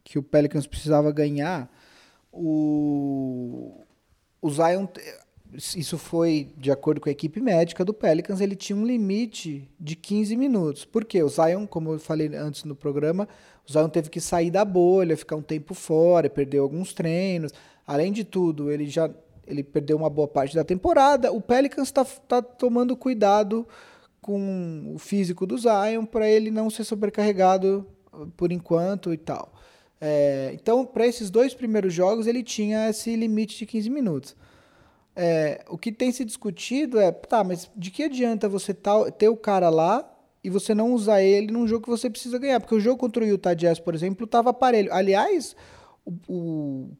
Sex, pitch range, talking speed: male, 165-230 Hz, 175 wpm